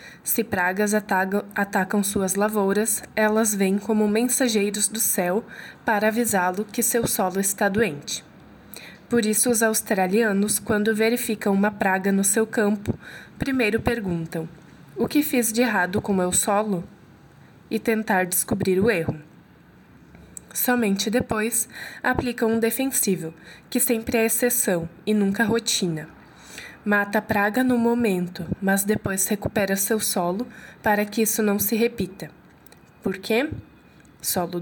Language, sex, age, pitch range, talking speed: Portuguese, female, 20-39, 195-225 Hz, 130 wpm